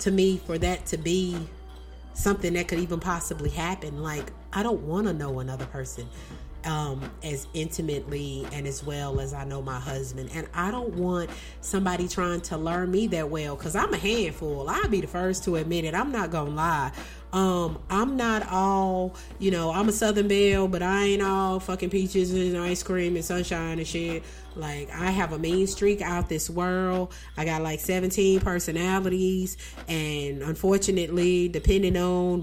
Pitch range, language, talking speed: 150-185 Hz, English, 185 wpm